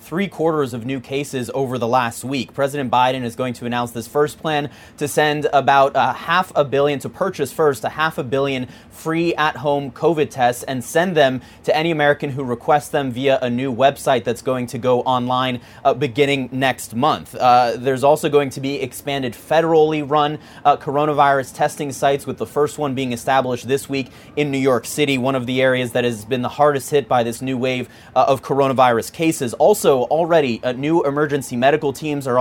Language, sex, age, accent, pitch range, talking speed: English, male, 30-49, American, 125-150 Hz, 205 wpm